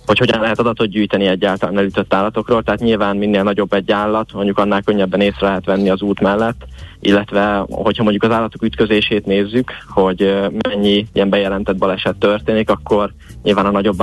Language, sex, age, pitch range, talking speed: Hungarian, male, 20-39, 95-105 Hz, 170 wpm